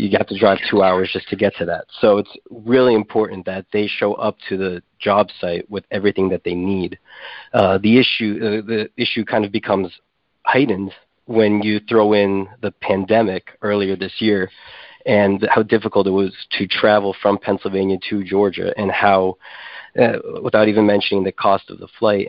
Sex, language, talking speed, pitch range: male, English, 185 wpm, 95-110 Hz